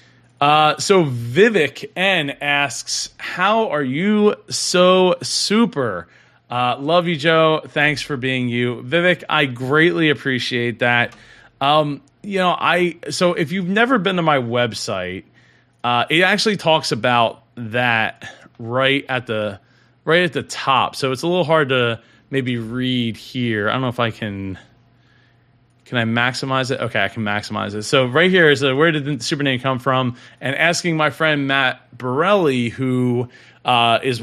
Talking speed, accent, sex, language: 160 wpm, American, male, English